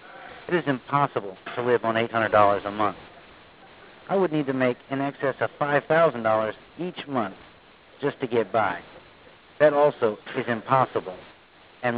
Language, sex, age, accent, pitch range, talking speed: English, male, 60-79, American, 120-155 Hz, 145 wpm